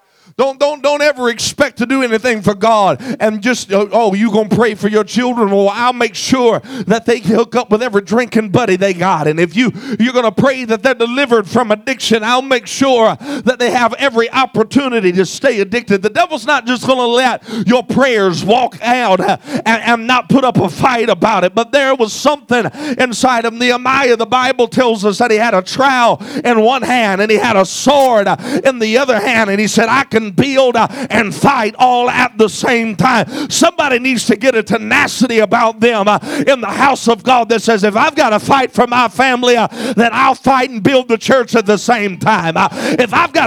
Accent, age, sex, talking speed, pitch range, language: American, 40-59, male, 220 wpm, 220-265 Hz, English